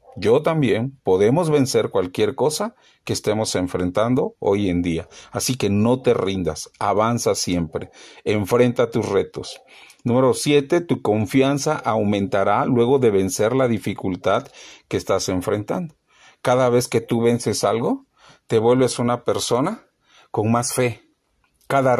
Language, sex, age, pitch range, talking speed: Spanish, male, 40-59, 110-145 Hz, 135 wpm